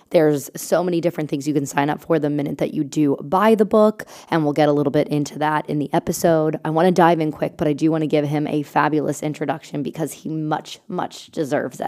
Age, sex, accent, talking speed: 20-39, female, American, 255 wpm